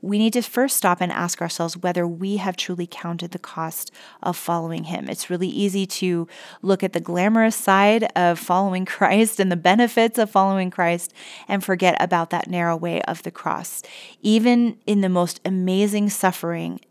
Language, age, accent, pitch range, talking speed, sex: English, 30-49, American, 175-200 Hz, 180 wpm, female